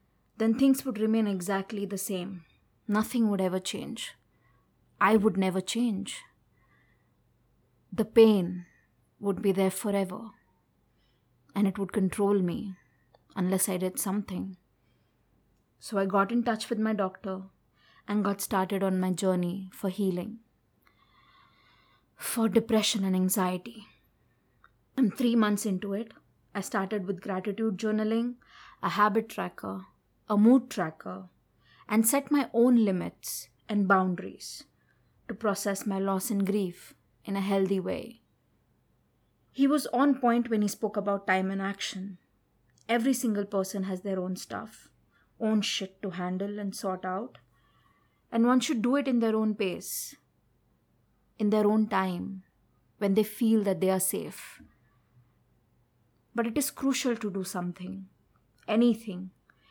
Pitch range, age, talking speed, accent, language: 190-220 Hz, 20-39, 135 wpm, Indian, English